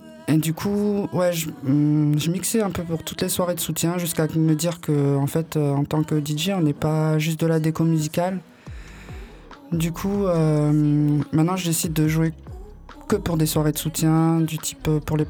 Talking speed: 195 wpm